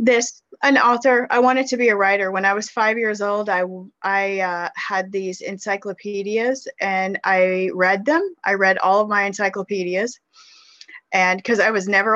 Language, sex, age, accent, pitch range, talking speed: English, female, 30-49, American, 180-215 Hz, 180 wpm